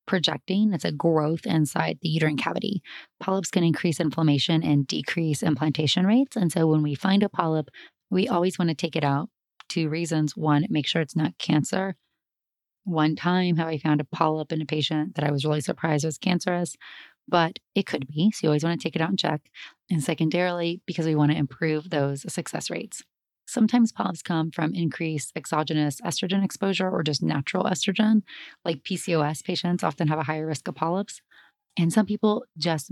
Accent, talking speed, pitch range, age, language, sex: American, 190 wpm, 155-190 Hz, 30-49, English, female